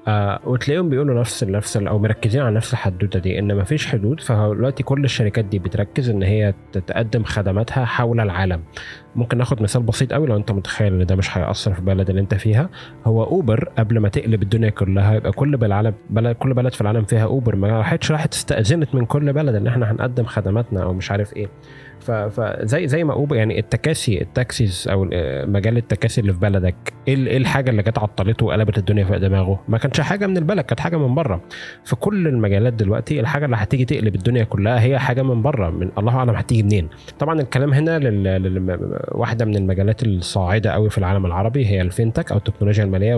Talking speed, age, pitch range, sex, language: 195 wpm, 20-39, 100-130 Hz, male, Arabic